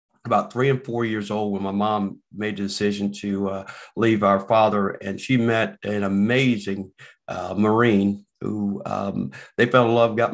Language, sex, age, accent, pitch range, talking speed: English, male, 50-69, American, 100-115 Hz, 180 wpm